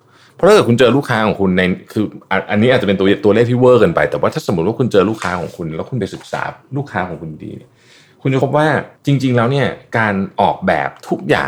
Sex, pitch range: male, 95-130 Hz